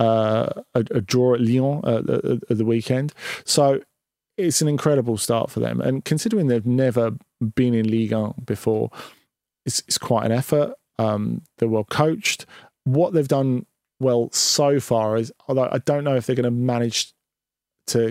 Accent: British